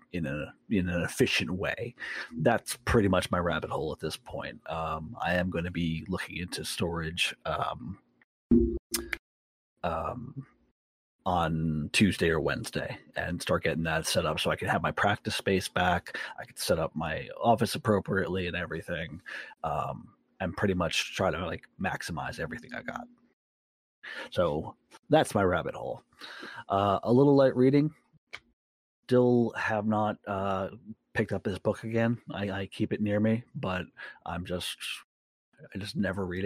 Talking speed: 155 wpm